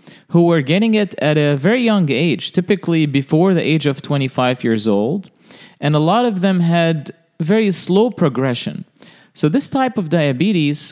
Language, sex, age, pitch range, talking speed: English, male, 30-49, 145-195 Hz, 170 wpm